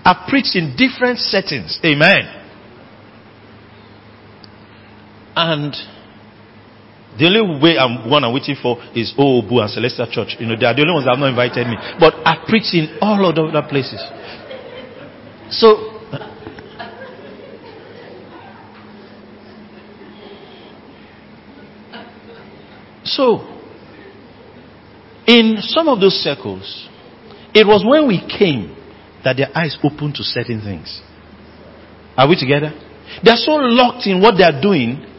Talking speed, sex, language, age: 120 wpm, male, English, 50-69